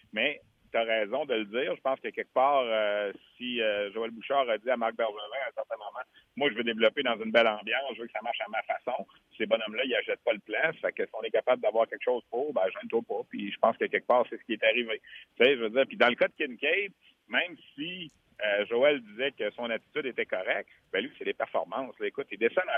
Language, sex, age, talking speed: French, male, 60-79, 285 wpm